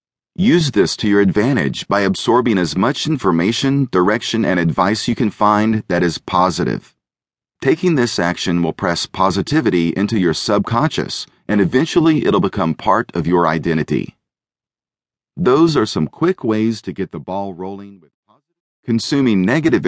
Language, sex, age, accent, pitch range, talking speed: English, male, 40-59, American, 90-130 Hz, 150 wpm